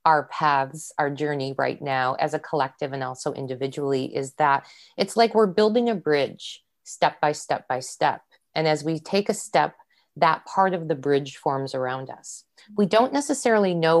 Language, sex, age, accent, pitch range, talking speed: English, female, 30-49, American, 140-180 Hz, 185 wpm